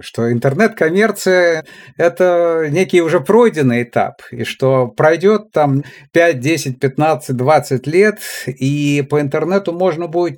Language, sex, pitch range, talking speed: Russian, male, 135-185 Hz, 120 wpm